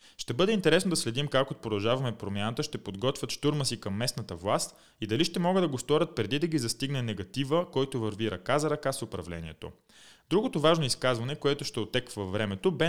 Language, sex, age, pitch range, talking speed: Bulgarian, male, 20-39, 110-155 Hz, 200 wpm